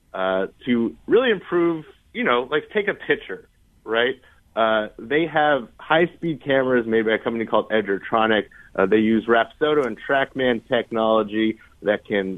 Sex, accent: male, American